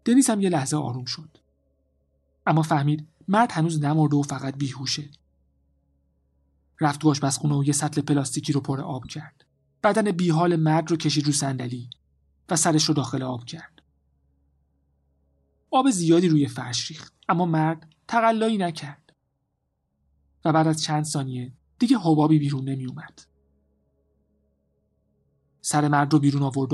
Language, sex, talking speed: Persian, male, 135 wpm